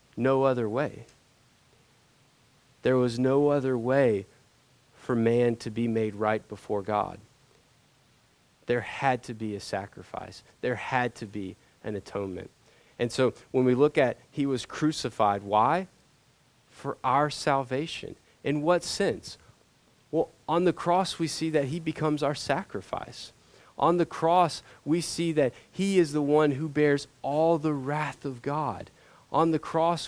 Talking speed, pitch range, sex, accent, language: 150 wpm, 120-150 Hz, male, American, English